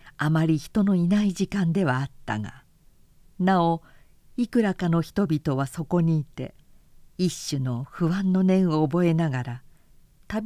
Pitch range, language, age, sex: 135-185 Hz, Japanese, 50-69, female